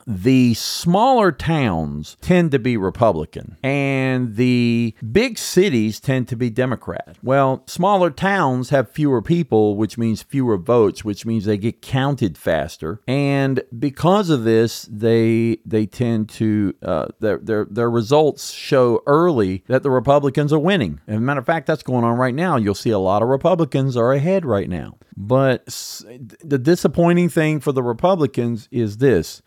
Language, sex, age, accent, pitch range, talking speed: English, male, 40-59, American, 110-150 Hz, 165 wpm